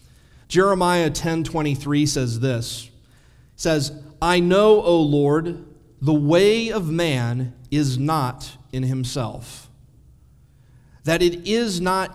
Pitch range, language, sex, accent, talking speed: 125-165 Hz, English, male, American, 105 wpm